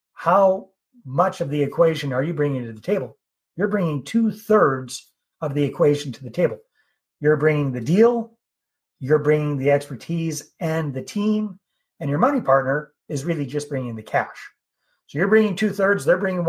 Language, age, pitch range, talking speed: English, 30-49, 135-170 Hz, 180 wpm